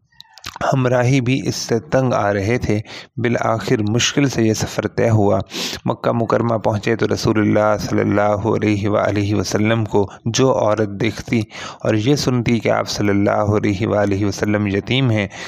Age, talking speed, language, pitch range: 30-49, 165 wpm, Urdu, 105-120 Hz